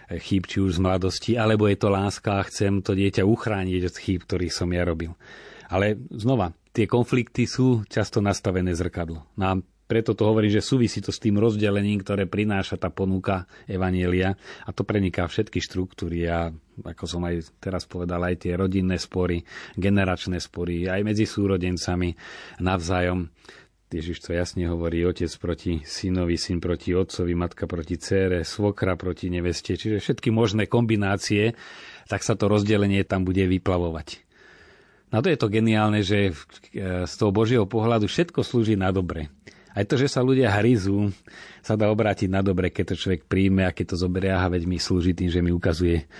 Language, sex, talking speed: Slovak, male, 170 wpm